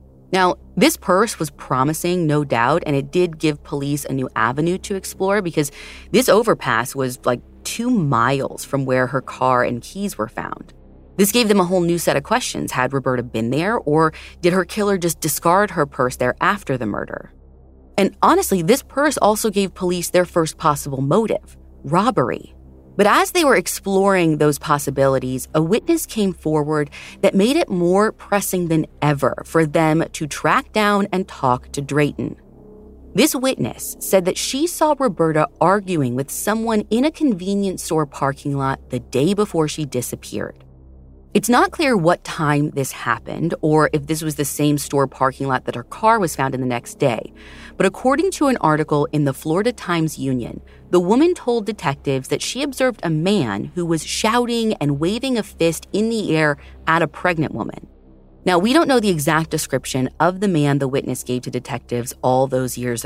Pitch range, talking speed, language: 130-195 Hz, 185 wpm, English